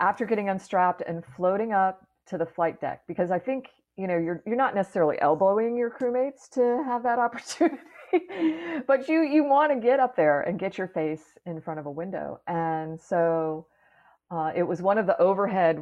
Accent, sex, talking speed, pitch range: American, female, 195 wpm, 170-235 Hz